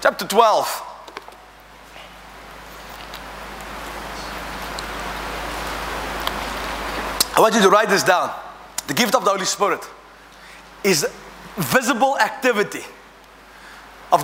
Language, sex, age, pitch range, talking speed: English, male, 30-49, 185-245 Hz, 80 wpm